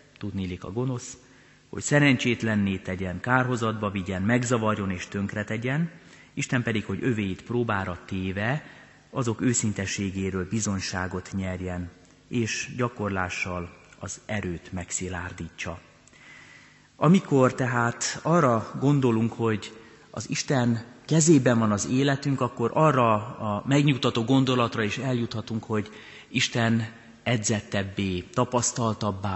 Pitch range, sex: 95-125 Hz, male